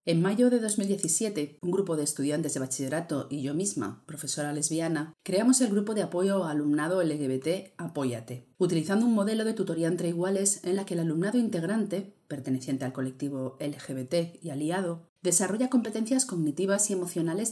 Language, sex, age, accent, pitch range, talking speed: Spanish, female, 40-59, Spanish, 145-195 Hz, 165 wpm